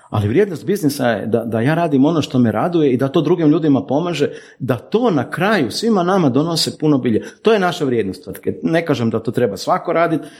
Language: Croatian